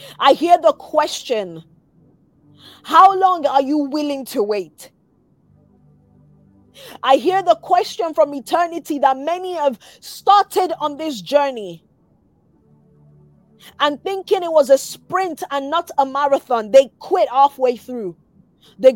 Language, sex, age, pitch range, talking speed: English, female, 20-39, 205-305 Hz, 125 wpm